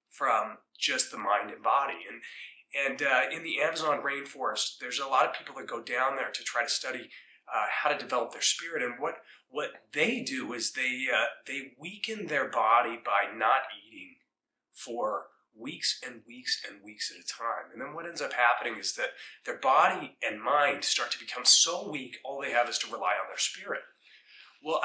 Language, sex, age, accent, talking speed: English, male, 30-49, American, 200 wpm